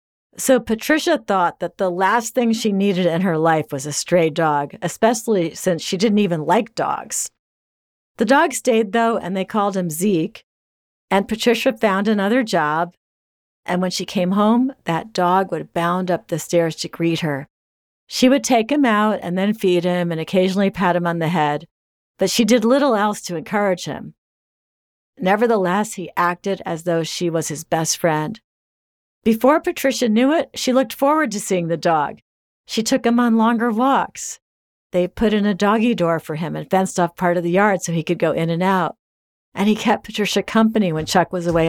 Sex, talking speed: female, 195 wpm